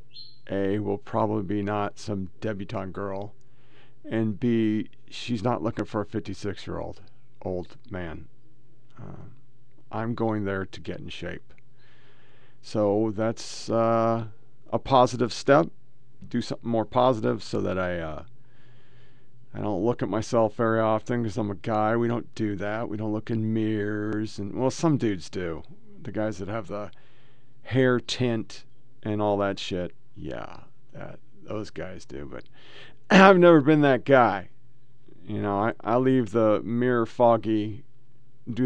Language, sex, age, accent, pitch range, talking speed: English, male, 50-69, American, 105-125 Hz, 150 wpm